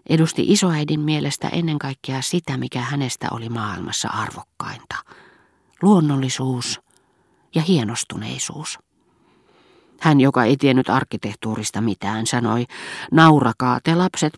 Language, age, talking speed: Finnish, 40-59, 100 wpm